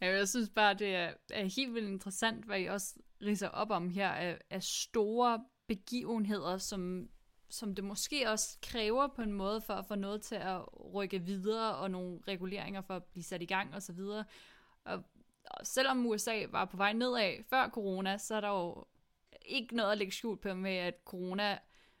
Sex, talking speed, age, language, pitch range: female, 185 wpm, 20-39, Danish, 190-225 Hz